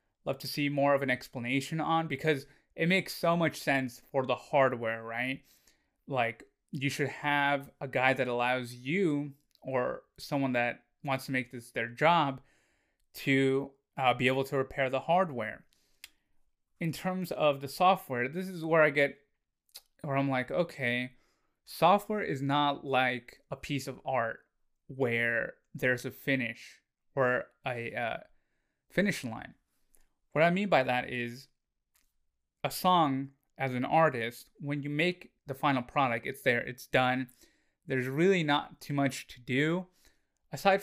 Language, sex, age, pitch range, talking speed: English, male, 20-39, 125-145 Hz, 155 wpm